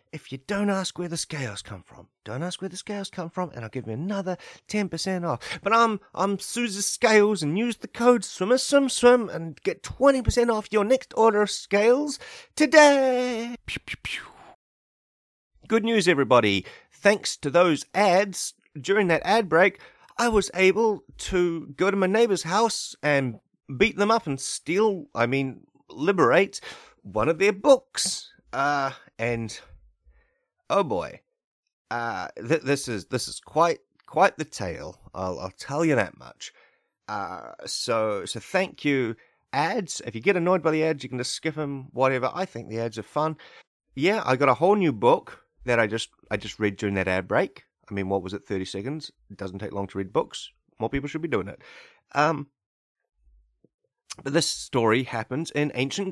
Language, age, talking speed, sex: English, 30-49, 180 wpm, male